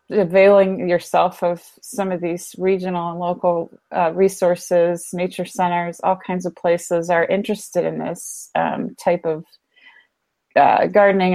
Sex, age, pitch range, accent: female, 30-49, 170-200 Hz, American